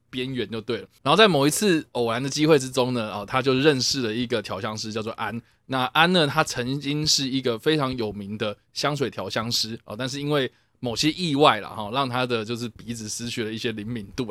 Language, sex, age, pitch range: Chinese, male, 20-39, 115-140 Hz